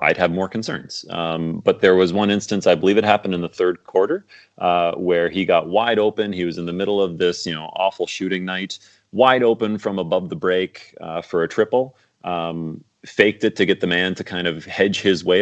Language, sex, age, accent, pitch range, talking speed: English, male, 30-49, American, 85-100 Hz, 230 wpm